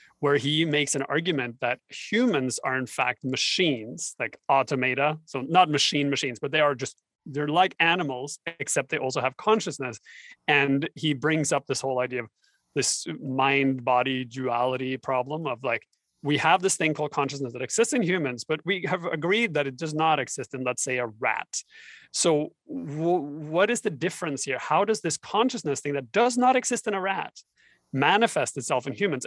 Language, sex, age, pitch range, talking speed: English, male, 30-49, 130-160 Hz, 180 wpm